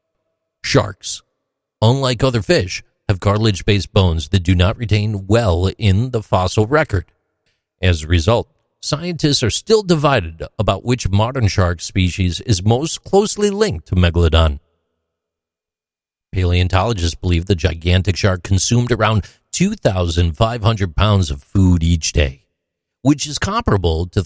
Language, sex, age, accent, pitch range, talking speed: English, male, 40-59, American, 90-130 Hz, 125 wpm